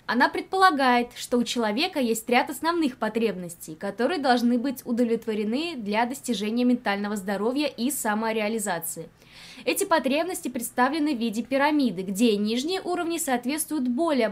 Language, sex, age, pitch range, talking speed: Russian, female, 20-39, 215-275 Hz, 125 wpm